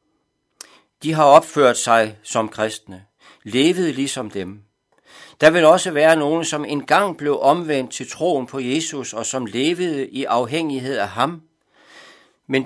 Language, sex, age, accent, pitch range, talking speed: Danish, male, 60-79, native, 115-155 Hz, 140 wpm